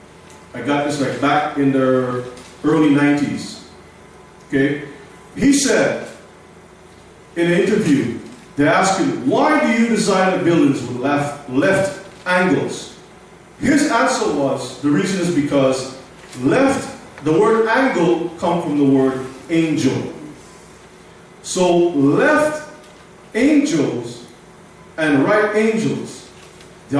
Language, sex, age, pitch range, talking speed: English, male, 40-59, 140-205 Hz, 115 wpm